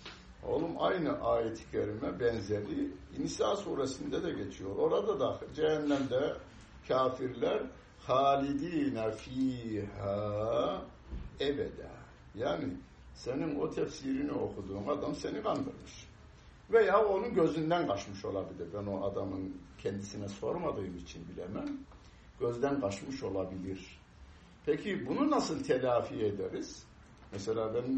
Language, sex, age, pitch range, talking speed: Turkish, male, 60-79, 85-120 Hz, 95 wpm